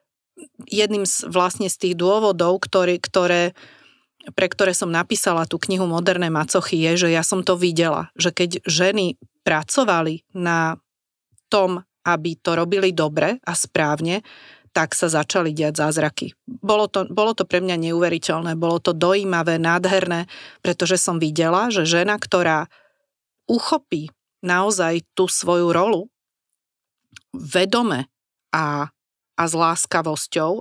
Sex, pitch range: female, 165-190 Hz